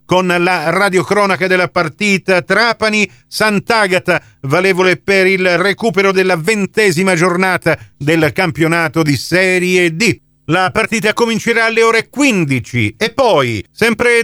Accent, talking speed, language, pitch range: native, 115 wpm, Italian, 165-215 Hz